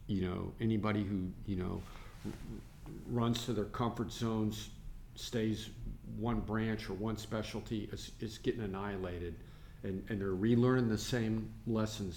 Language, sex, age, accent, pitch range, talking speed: English, male, 50-69, American, 95-110 Hz, 140 wpm